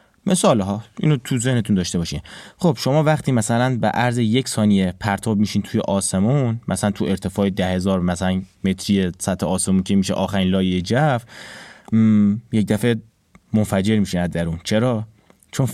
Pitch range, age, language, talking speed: 95-125 Hz, 30-49, Persian, 145 wpm